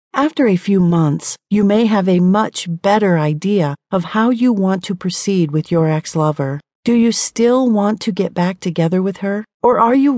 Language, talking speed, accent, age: English, 195 wpm, American, 40-59